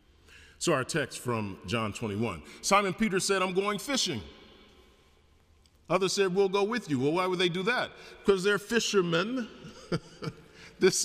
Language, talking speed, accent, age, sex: English, 150 wpm, American, 50-69, male